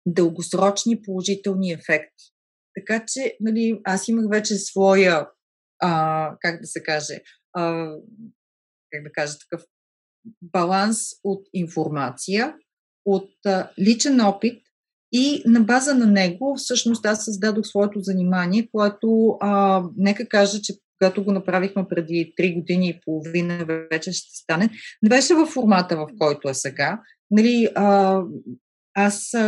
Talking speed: 130 wpm